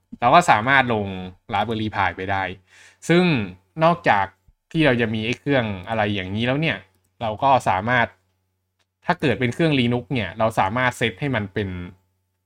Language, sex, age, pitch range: Thai, male, 20-39, 95-120 Hz